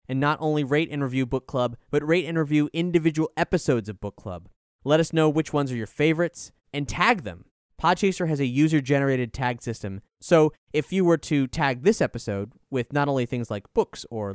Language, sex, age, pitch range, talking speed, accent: English, male, 20-39, 115-160 Hz, 205 wpm, American